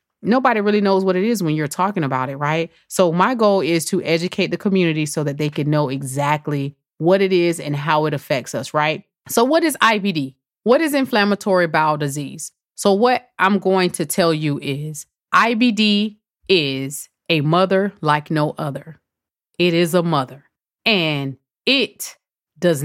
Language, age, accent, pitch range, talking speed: English, 30-49, American, 150-200 Hz, 175 wpm